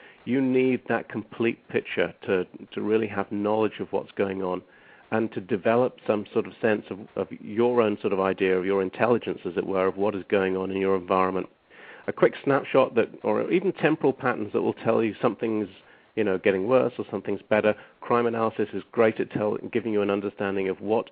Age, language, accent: 50-69, English, British